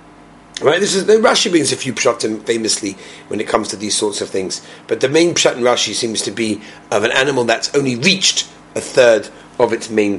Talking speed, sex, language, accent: 225 wpm, male, English, British